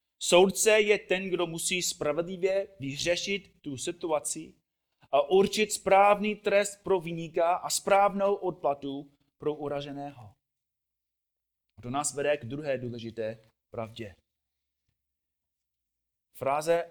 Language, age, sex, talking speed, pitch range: Czech, 30-49, male, 100 wpm, 110-175 Hz